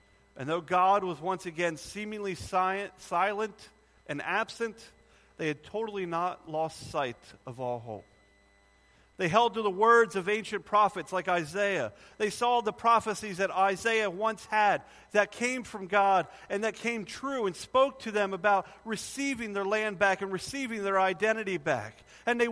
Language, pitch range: English, 140-210 Hz